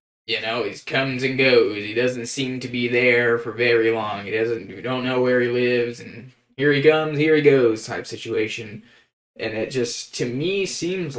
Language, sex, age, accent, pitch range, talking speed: English, male, 20-39, American, 115-145 Hz, 205 wpm